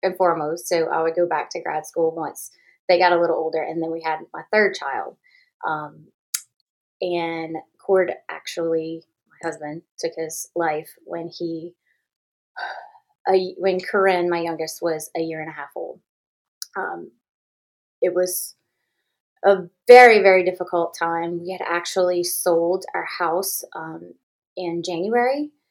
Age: 20-39